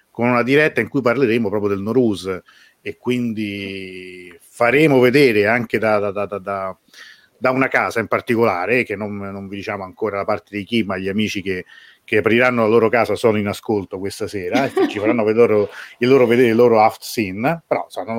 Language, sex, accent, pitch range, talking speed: Italian, male, native, 100-120 Hz, 200 wpm